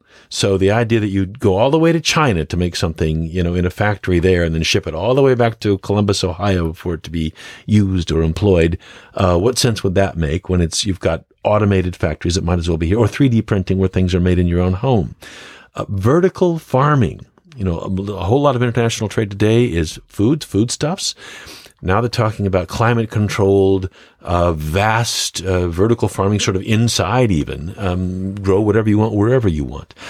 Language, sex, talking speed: English, male, 210 wpm